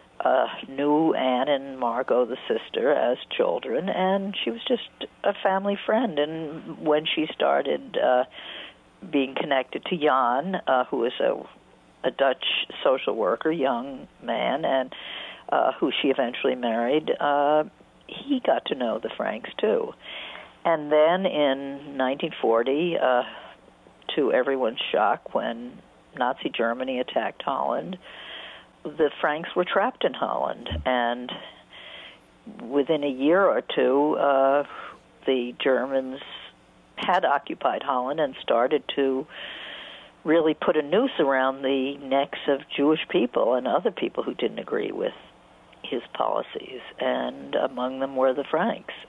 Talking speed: 130 wpm